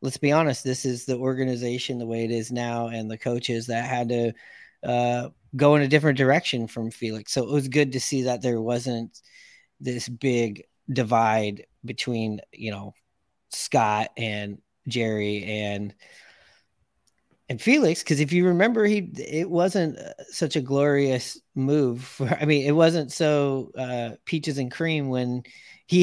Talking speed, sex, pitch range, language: 160 wpm, male, 120-145 Hz, English